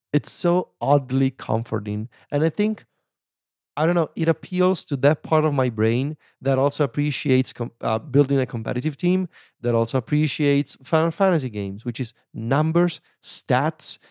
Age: 30-49